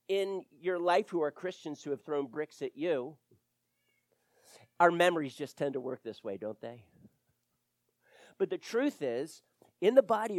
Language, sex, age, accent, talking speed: English, male, 40-59, American, 170 wpm